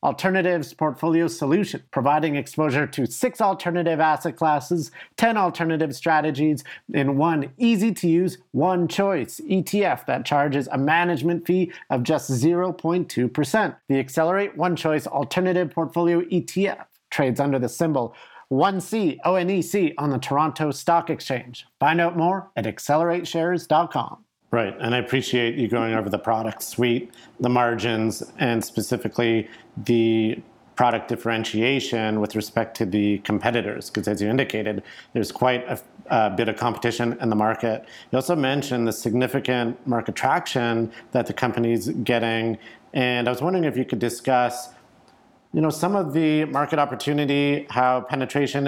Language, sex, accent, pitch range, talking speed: English, male, American, 120-165 Hz, 140 wpm